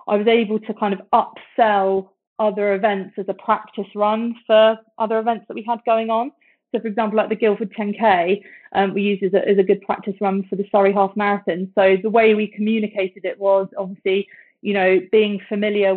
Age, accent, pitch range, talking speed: 30-49, British, 195-225 Hz, 205 wpm